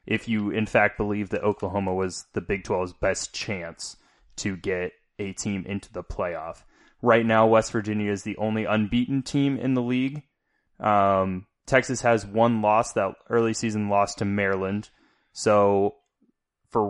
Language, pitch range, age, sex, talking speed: English, 95-110 Hz, 20-39, male, 160 wpm